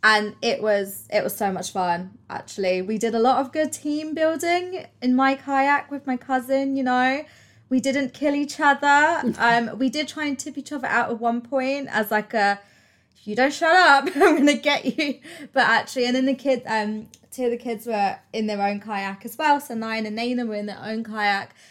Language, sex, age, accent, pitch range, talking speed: English, female, 20-39, British, 210-270 Hz, 225 wpm